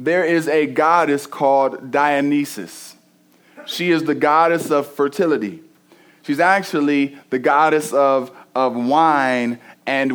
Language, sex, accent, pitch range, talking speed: English, male, American, 150-185 Hz, 120 wpm